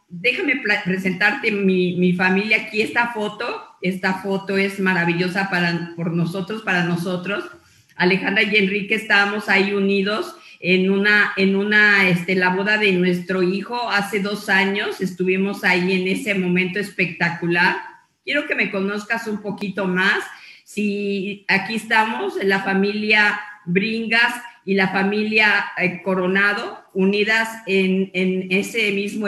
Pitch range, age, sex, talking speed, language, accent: 190-220 Hz, 50-69, female, 135 wpm, Spanish, Mexican